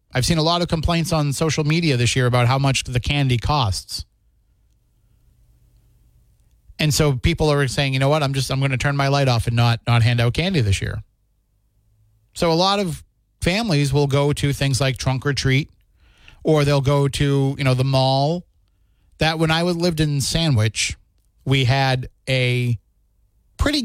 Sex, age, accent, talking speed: male, 30-49, American, 180 wpm